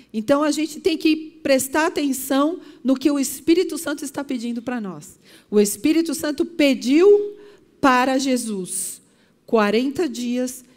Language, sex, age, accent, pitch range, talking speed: Portuguese, female, 40-59, Brazilian, 230-310 Hz, 135 wpm